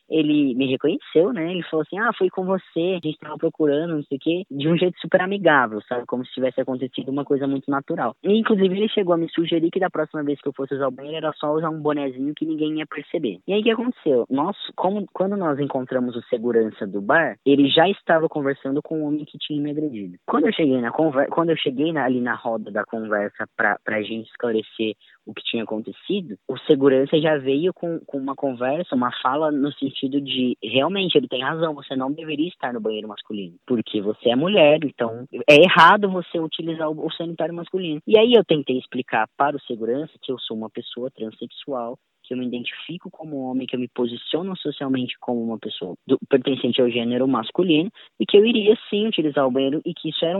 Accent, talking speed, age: Brazilian, 225 wpm, 10-29